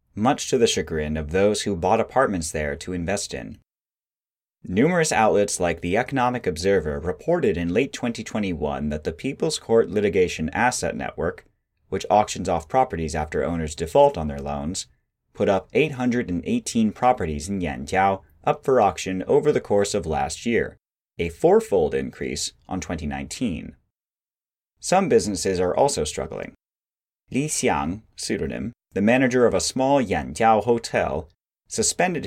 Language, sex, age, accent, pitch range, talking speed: English, male, 30-49, American, 85-120 Hz, 140 wpm